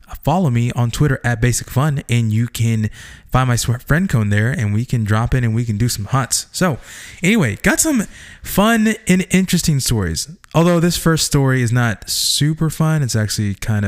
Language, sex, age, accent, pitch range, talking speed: English, male, 20-39, American, 105-130 Hz, 195 wpm